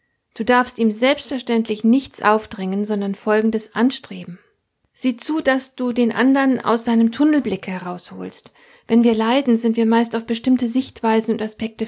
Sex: female